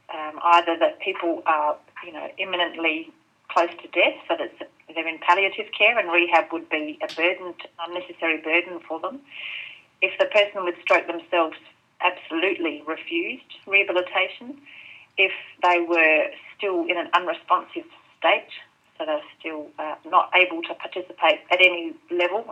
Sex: female